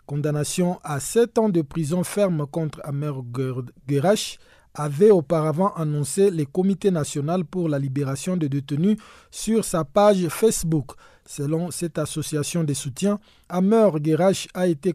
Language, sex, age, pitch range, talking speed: French, male, 50-69, 150-195 Hz, 135 wpm